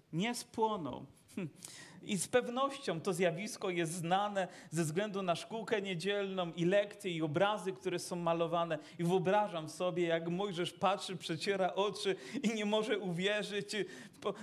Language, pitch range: Polish, 160-215 Hz